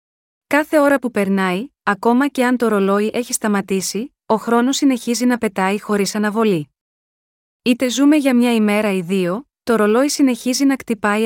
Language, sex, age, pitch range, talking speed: Greek, female, 20-39, 200-250 Hz, 160 wpm